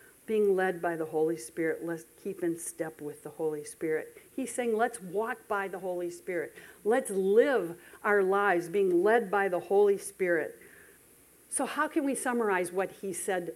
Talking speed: 175 wpm